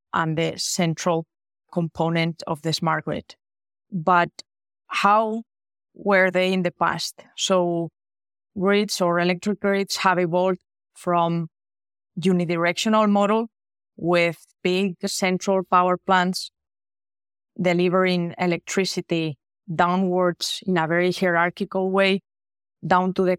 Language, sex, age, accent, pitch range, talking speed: English, female, 20-39, Spanish, 170-190 Hz, 105 wpm